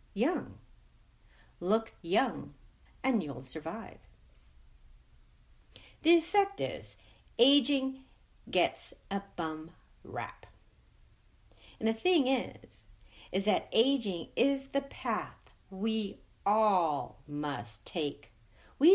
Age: 50-69